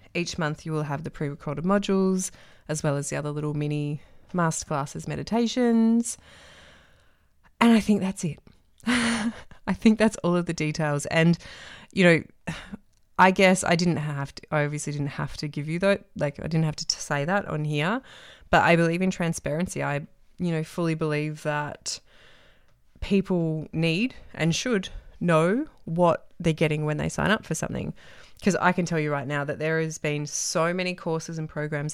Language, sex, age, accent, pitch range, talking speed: English, female, 20-39, Australian, 150-180 Hz, 180 wpm